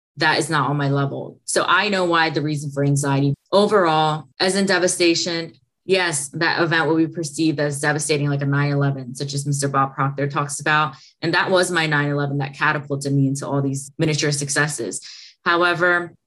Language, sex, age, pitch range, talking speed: English, female, 20-39, 140-160 Hz, 185 wpm